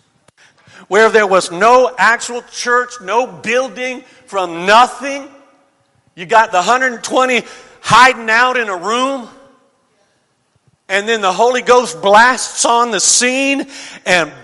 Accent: American